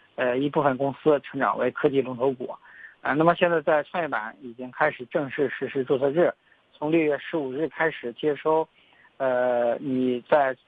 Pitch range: 130-155 Hz